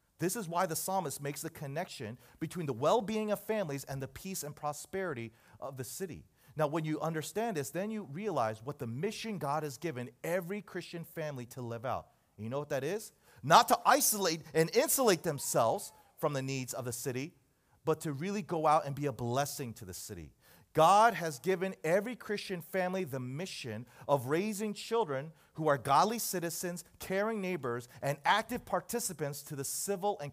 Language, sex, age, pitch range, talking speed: English, male, 40-59, 125-175 Hz, 185 wpm